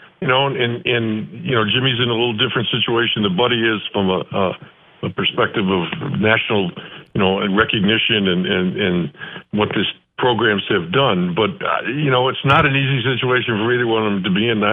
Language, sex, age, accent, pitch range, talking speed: English, male, 60-79, American, 110-135 Hz, 210 wpm